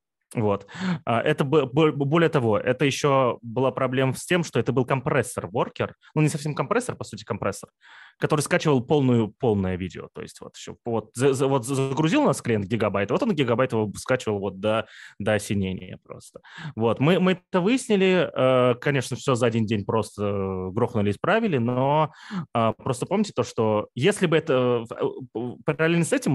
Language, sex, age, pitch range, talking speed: Russian, male, 20-39, 105-150 Hz, 160 wpm